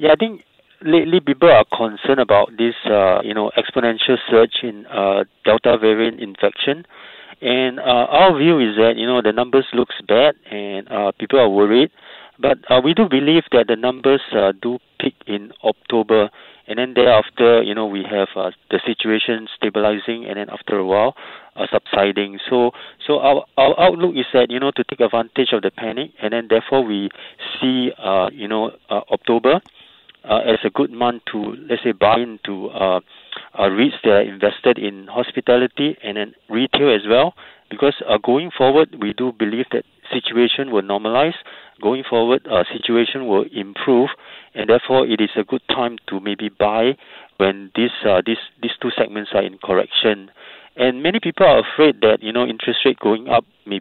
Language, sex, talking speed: English, male, 185 wpm